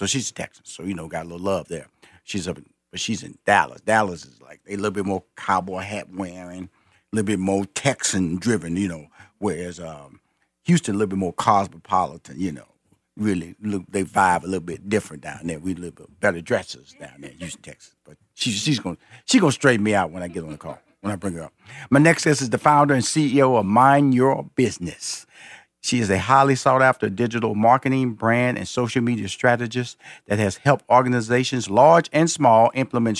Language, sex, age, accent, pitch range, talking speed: English, male, 50-69, American, 95-135 Hz, 215 wpm